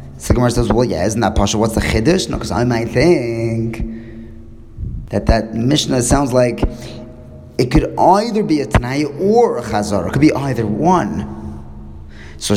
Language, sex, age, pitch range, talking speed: English, male, 20-39, 95-125 Hz, 165 wpm